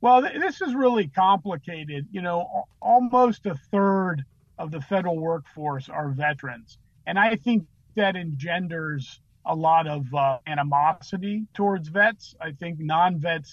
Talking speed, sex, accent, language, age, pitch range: 135 wpm, male, American, English, 40-59, 145-190 Hz